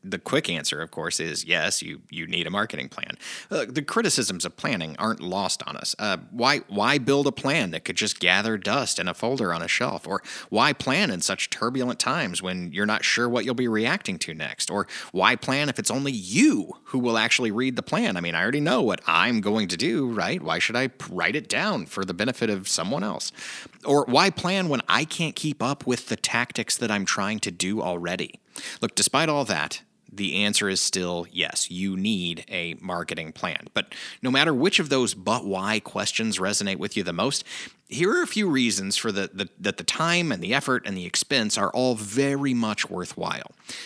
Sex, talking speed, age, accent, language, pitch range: male, 220 wpm, 30-49, American, English, 100-140 Hz